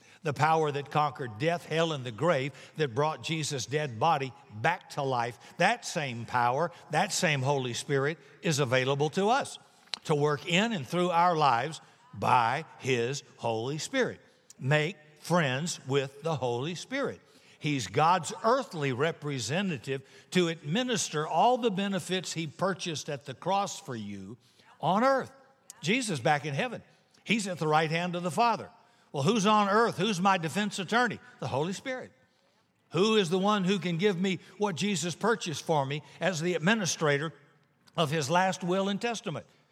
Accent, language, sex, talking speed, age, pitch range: American, English, male, 165 wpm, 60-79, 145-195 Hz